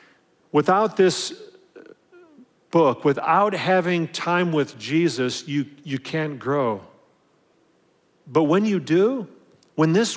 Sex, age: male, 40-59